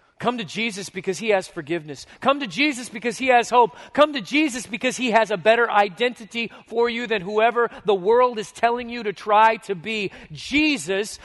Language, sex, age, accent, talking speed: English, male, 40-59, American, 195 wpm